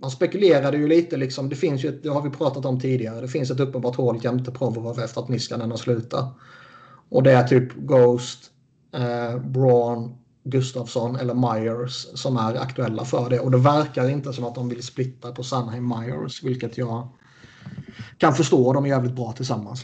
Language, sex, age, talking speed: Swedish, male, 30-49, 200 wpm